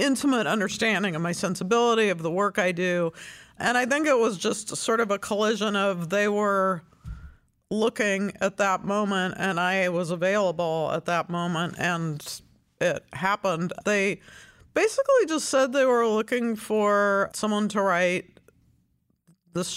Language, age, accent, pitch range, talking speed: English, 50-69, American, 165-215 Hz, 150 wpm